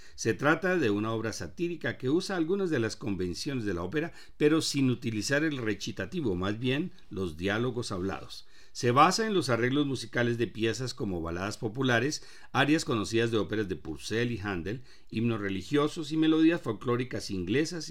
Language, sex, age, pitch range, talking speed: Spanish, male, 50-69, 100-150 Hz, 170 wpm